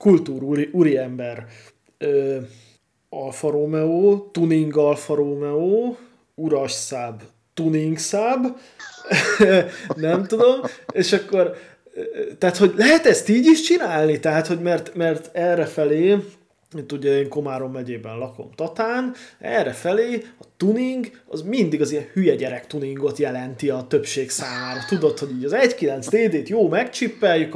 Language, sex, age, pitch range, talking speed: Hungarian, male, 20-39, 145-225 Hz, 120 wpm